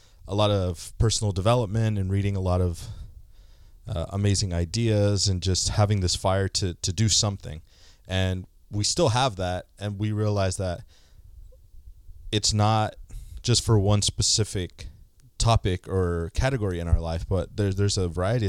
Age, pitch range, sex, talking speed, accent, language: 20-39, 85-105 Hz, male, 155 wpm, American, English